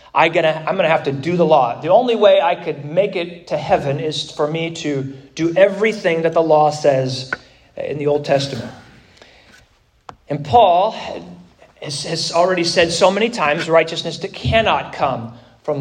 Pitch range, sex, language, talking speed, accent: 145-190 Hz, male, English, 165 wpm, American